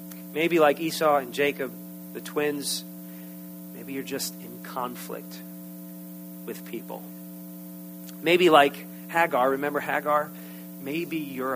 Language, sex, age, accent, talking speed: English, male, 40-59, American, 110 wpm